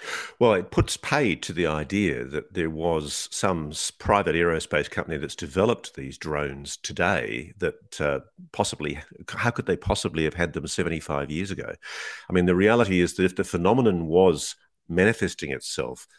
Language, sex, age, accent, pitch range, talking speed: English, male, 50-69, Australian, 75-95 Hz, 165 wpm